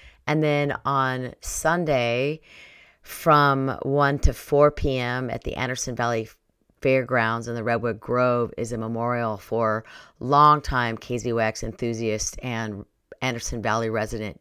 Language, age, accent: English, 40-59, American